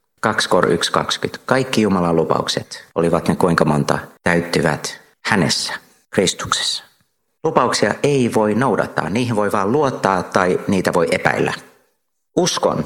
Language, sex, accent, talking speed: Finnish, male, native, 120 wpm